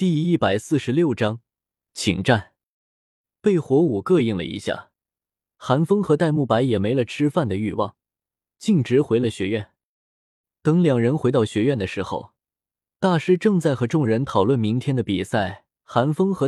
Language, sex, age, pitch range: Chinese, male, 20-39, 110-160 Hz